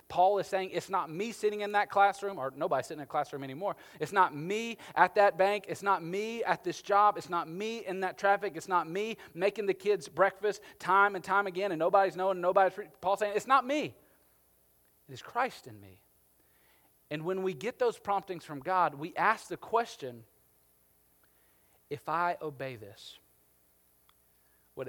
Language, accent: English, American